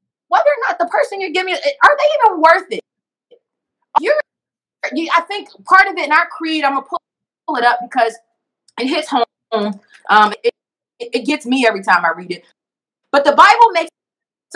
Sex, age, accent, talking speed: female, 20-39, American, 185 wpm